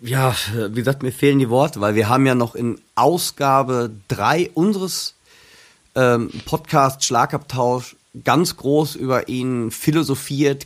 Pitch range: 120-145 Hz